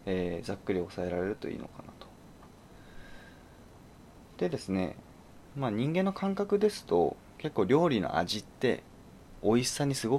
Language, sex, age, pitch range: Japanese, male, 20-39, 95-145 Hz